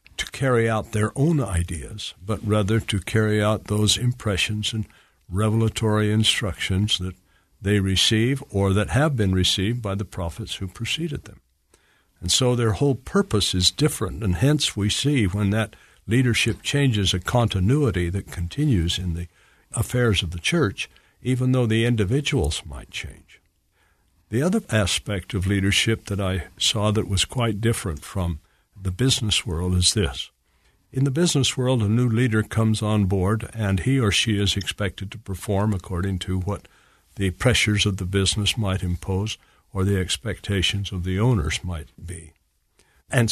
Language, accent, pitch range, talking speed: English, American, 90-115 Hz, 160 wpm